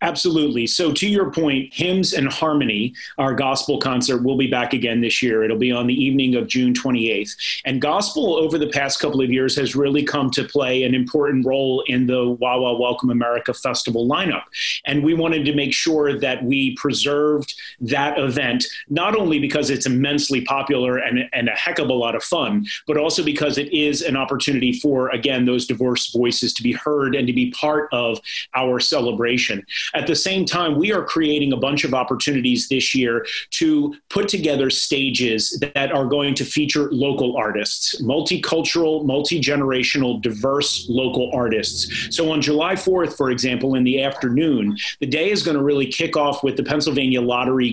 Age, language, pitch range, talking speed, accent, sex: 30-49, English, 125-150 Hz, 185 wpm, American, male